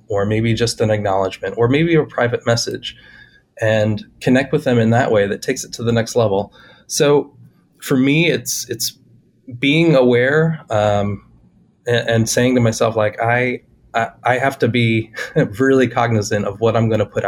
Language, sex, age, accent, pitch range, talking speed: English, male, 20-39, American, 110-130 Hz, 175 wpm